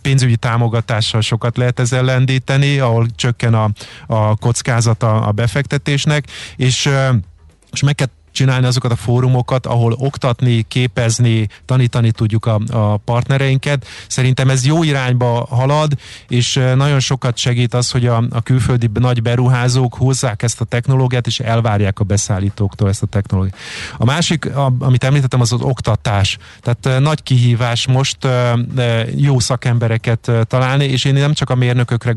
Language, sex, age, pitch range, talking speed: Hungarian, male, 30-49, 115-130 Hz, 140 wpm